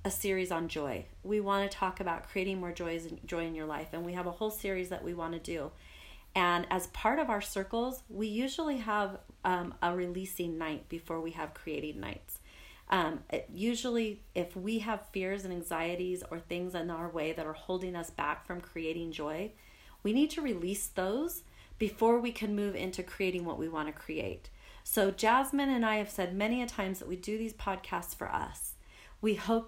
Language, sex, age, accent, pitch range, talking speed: English, female, 40-59, American, 175-225 Hz, 205 wpm